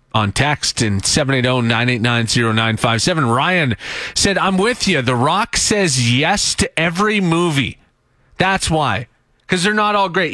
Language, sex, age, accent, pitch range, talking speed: English, male, 30-49, American, 115-160 Hz, 135 wpm